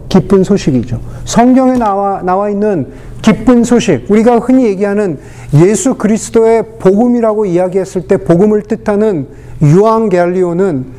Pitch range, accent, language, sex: 135-215 Hz, native, Korean, male